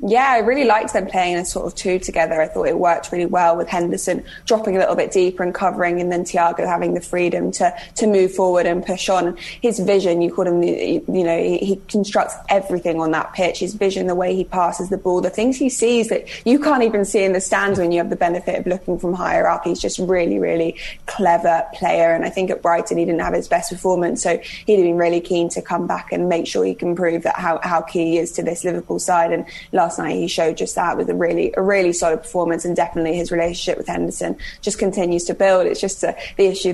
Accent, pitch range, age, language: British, 170-190 Hz, 20-39, English